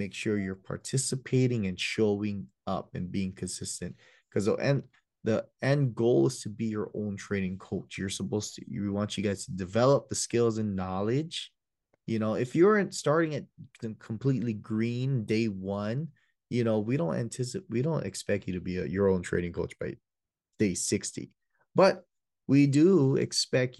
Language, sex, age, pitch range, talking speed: English, male, 20-39, 100-120 Hz, 175 wpm